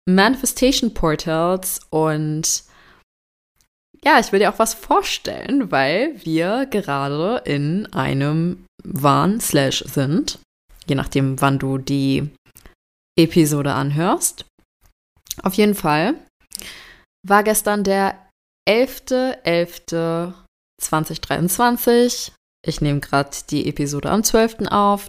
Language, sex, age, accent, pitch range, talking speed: German, female, 20-39, German, 150-205 Hz, 95 wpm